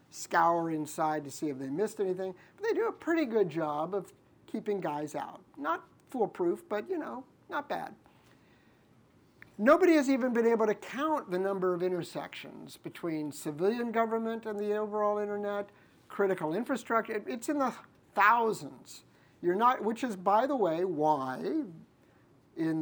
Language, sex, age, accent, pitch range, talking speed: English, male, 50-69, American, 160-220 Hz, 155 wpm